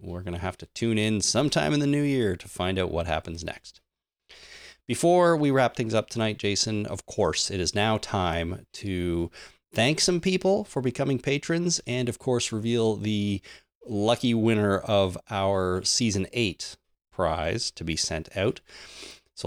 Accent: American